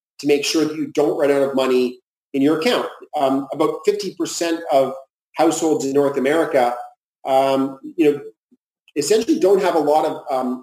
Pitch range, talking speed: 135-185 Hz, 175 wpm